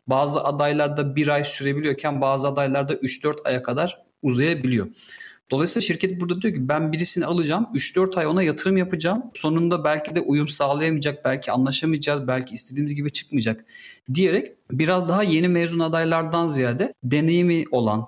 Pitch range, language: 140-175 Hz, Turkish